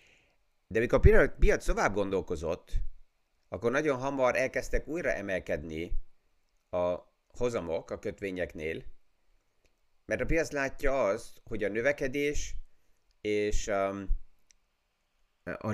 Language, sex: Hungarian, male